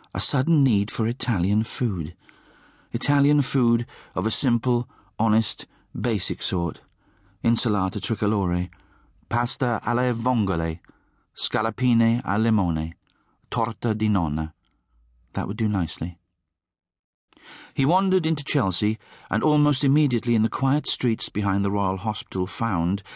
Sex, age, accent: male, 40-59, British